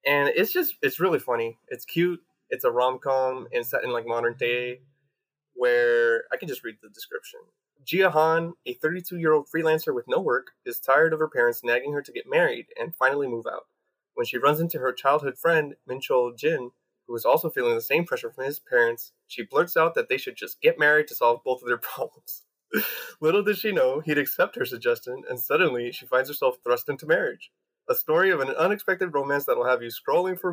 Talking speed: 210 wpm